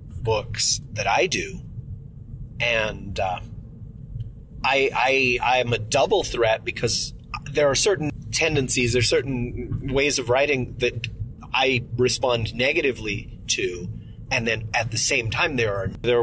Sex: male